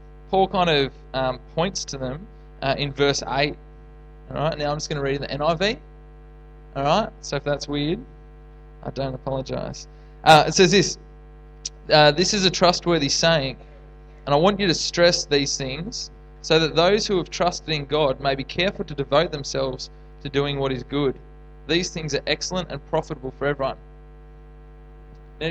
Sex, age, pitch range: male, 20-39, 145-165 Hz